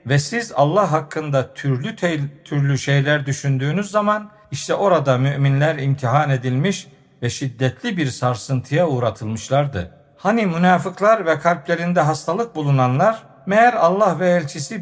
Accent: native